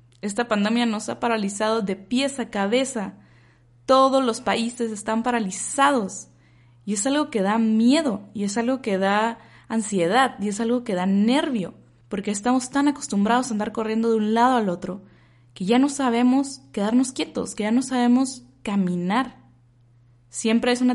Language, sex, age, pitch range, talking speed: Spanish, female, 20-39, 180-235 Hz, 165 wpm